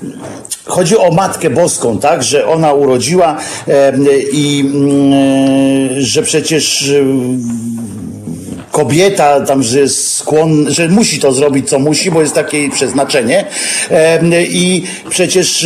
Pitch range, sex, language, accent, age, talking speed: 135-175 Hz, male, Polish, native, 50-69, 125 wpm